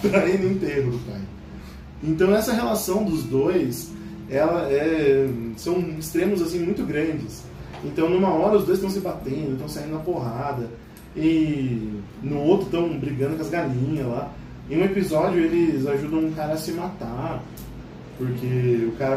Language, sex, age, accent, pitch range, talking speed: Portuguese, male, 20-39, Brazilian, 125-175 Hz, 155 wpm